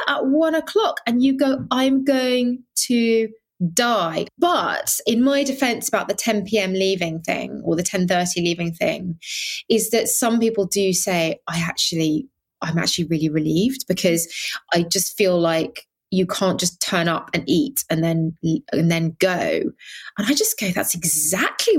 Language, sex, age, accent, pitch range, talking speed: English, female, 20-39, British, 170-260 Hz, 170 wpm